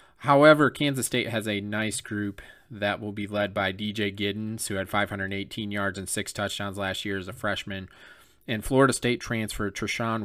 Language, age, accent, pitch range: English, 30-49, American, 100-115 Hz